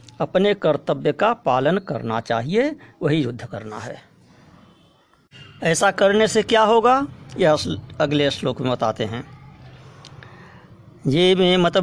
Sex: female